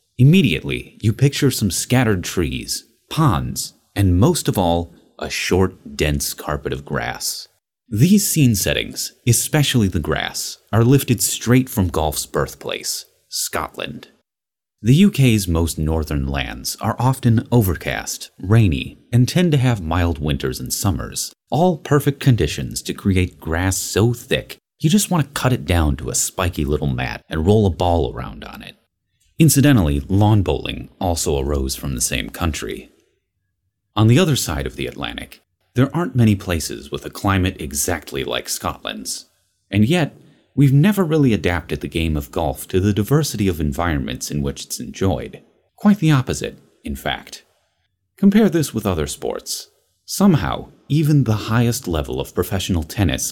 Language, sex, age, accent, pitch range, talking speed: English, male, 30-49, American, 85-130 Hz, 155 wpm